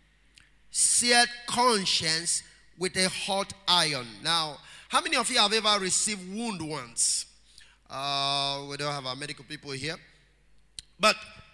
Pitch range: 155-205 Hz